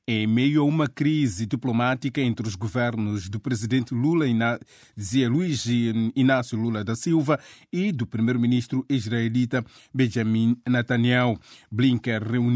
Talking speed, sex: 115 wpm, male